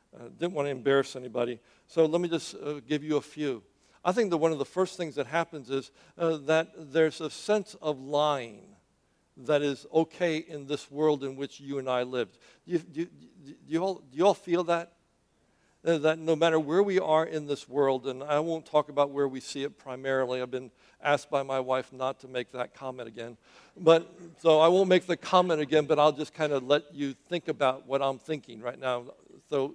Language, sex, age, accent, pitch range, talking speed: English, male, 60-79, American, 135-170 Hz, 225 wpm